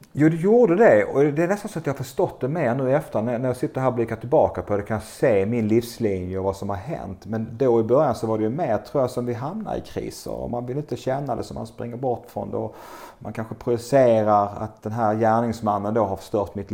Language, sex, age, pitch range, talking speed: Swedish, male, 30-49, 95-120 Hz, 275 wpm